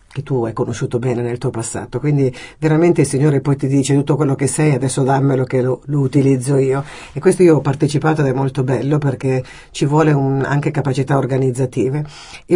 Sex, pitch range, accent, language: female, 130-160 Hz, native, Italian